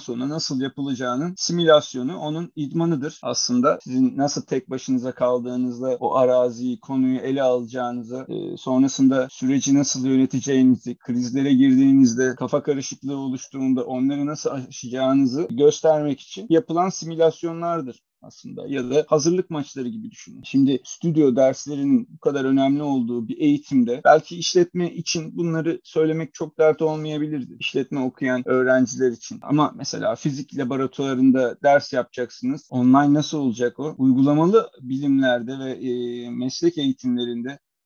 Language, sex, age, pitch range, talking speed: Turkish, male, 40-59, 130-160 Hz, 120 wpm